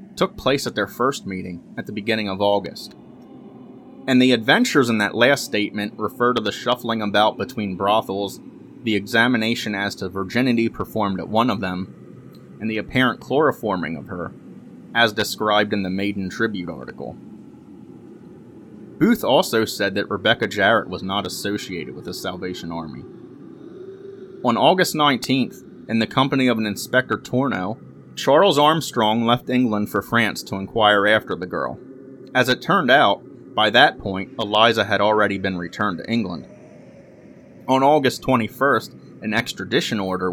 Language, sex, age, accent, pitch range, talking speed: English, male, 30-49, American, 95-125 Hz, 150 wpm